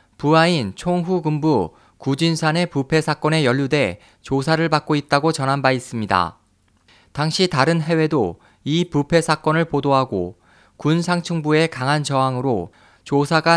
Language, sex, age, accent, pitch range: Korean, male, 20-39, native, 120-160 Hz